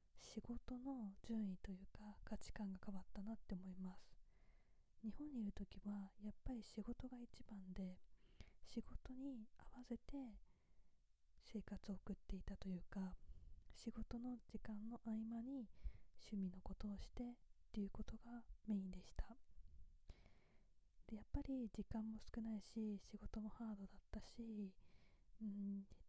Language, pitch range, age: Japanese, 195-225 Hz, 20-39